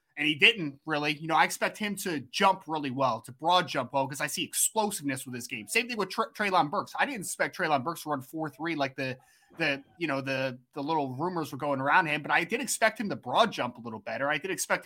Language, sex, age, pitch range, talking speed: English, male, 20-39, 145-180 Hz, 265 wpm